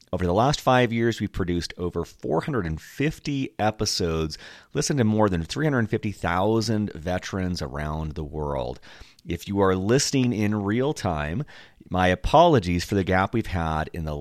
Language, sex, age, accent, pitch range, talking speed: English, male, 30-49, American, 80-110 Hz, 150 wpm